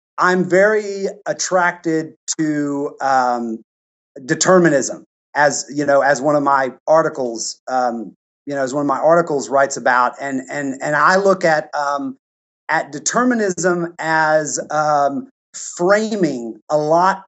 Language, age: English, 30-49